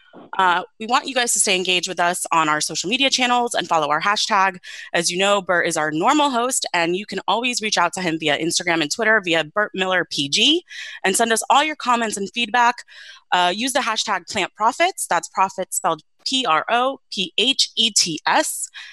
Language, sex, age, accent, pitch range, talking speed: English, female, 30-49, American, 175-240 Hz, 185 wpm